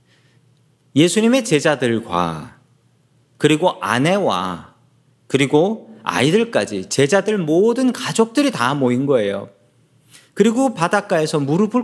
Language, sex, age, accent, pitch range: Korean, male, 40-59, native, 135-200 Hz